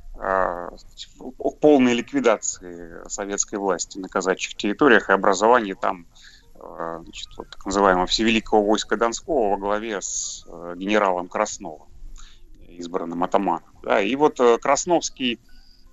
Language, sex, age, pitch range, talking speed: Russian, male, 30-49, 100-135 Hz, 105 wpm